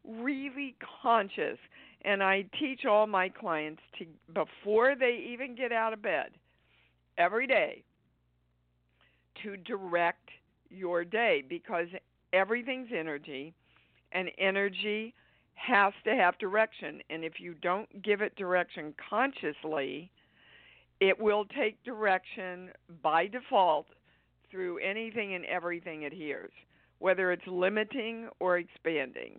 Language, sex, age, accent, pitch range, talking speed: English, female, 50-69, American, 165-210 Hz, 115 wpm